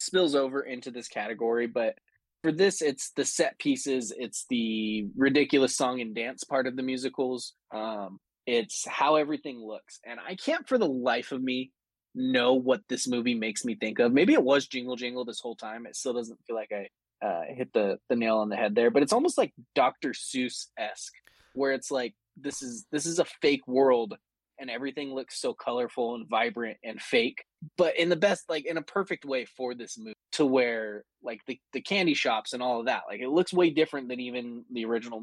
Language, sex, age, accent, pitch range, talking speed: English, male, 20-39, American, 110-145 Hz, 210 wpm